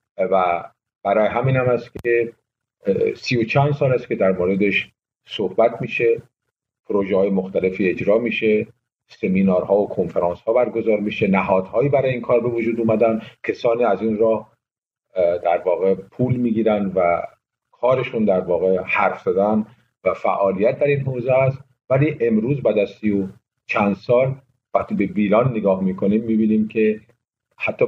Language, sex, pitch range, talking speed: Persian, male, 100-125 Hz, 155 wpm